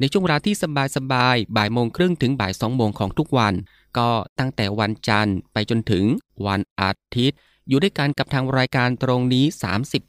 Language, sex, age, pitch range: Thai, male, 20-39, 105-130 Hz